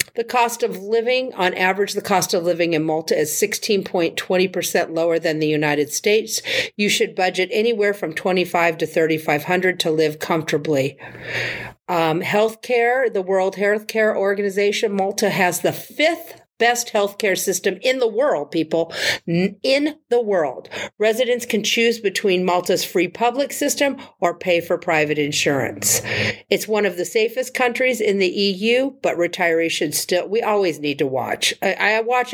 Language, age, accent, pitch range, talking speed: English, 50-69, American, 170-225 Hz, 155 wpm